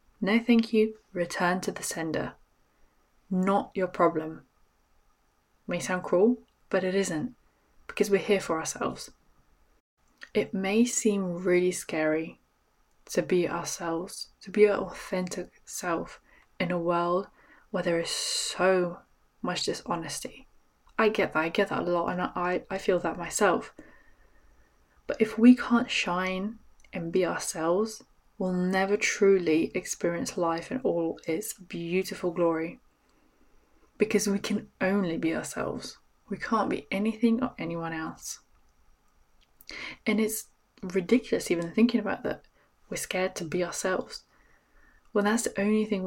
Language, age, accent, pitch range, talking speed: English, 20-39, British, 175-215 Hz, 135 wpm